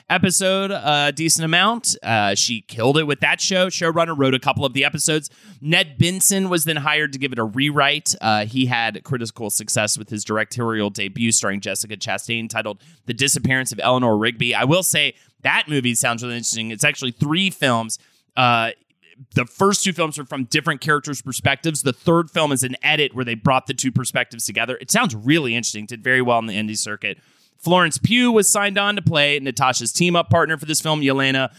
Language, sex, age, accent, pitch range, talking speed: English, male, 30-49, American, 120-170 Hz, 200 wpm